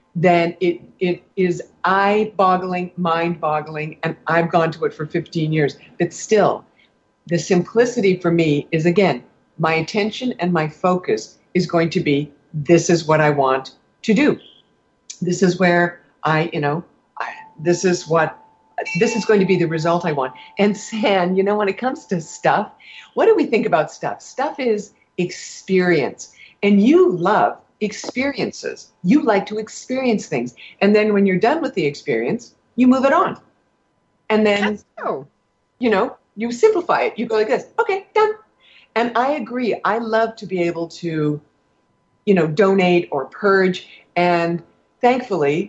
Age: 50-69